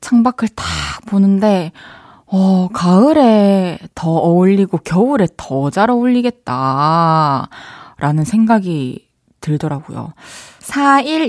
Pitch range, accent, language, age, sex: 160-230 Hz, native, Korean, 20-39, female